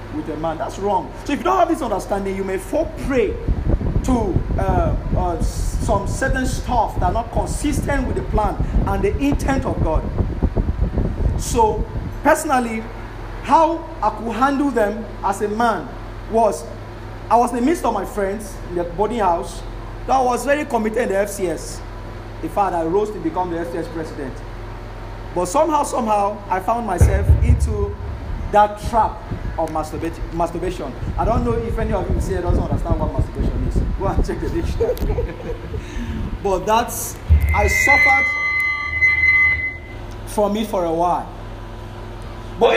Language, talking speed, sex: English, 155 wpm, male